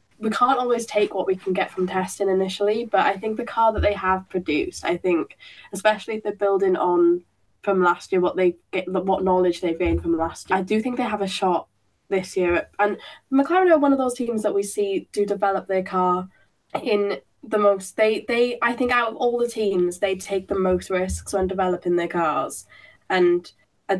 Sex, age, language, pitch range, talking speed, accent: female, 10-29, English, 185-220 Hz, 220 wpm, British